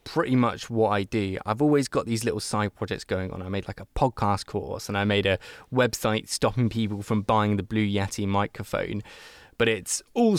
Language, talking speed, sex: English, 210 wpm, male